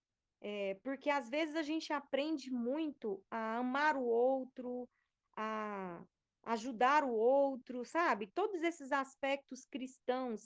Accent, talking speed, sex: Brazilian, 120 wpm, female